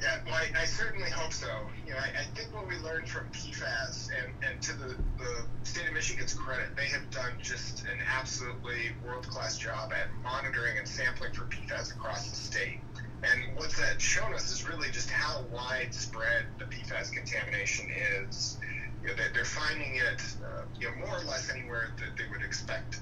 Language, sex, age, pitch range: English, male, 30-49, 115-130 Hz